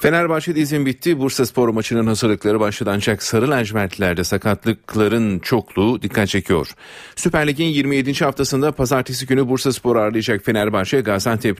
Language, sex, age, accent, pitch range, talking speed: Turkish, male, 40-59, native, 100-130 Hz, 135 wpm